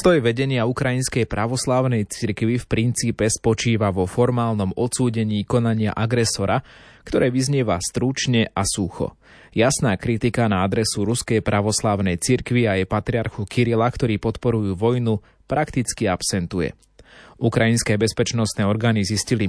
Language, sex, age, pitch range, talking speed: Slovak, male, 20-39, 100-120 Hz, 115 wpm